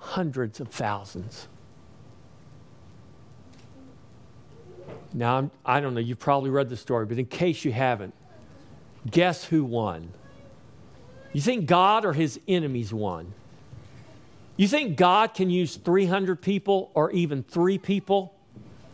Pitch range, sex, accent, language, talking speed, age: 130-190 Hz, male, American, English, 125 wpm, 50-69